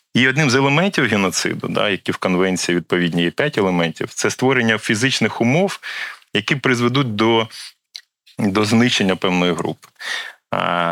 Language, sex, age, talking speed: Ukrainian, male, 30-49, 135 wpm